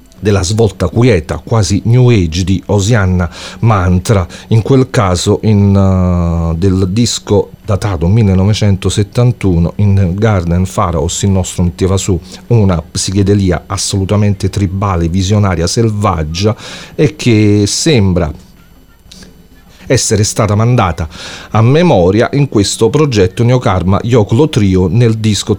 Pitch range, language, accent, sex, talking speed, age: 95-115 Hz, English, Italian, male, 110 wpm, 40-59